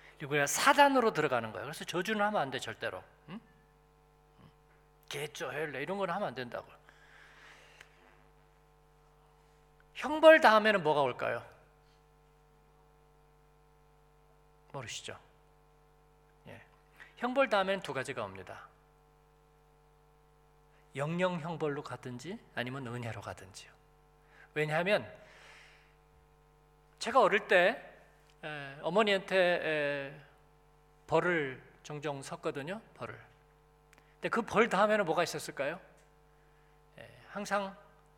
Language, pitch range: Korean, 145-180 Hz